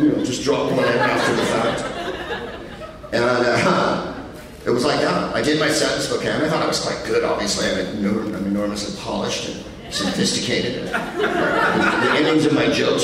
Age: 40-59